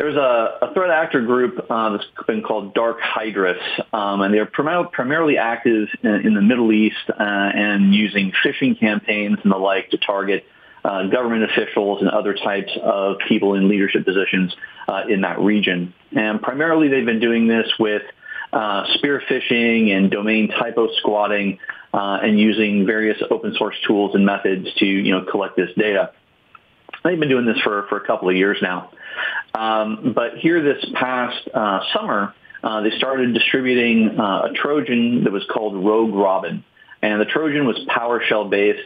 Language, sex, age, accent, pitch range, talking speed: English, male, 40-59, American, 100-115 Hz, 175 wpm